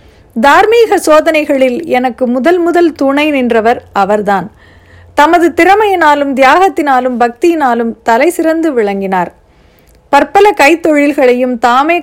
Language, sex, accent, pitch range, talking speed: Tamil, female, native, 225-295 Hz, 90 wpm